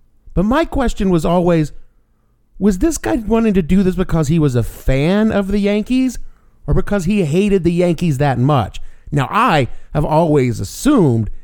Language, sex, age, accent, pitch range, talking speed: English, male, 50-69, American, 110-165 Hz, 175 wpm